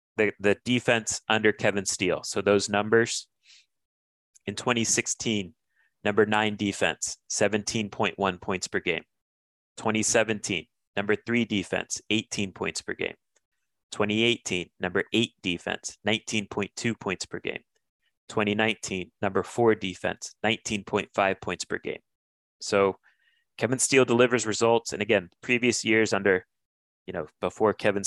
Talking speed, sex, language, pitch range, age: 120 wpm, male, English, 90-110 Hz, 30-49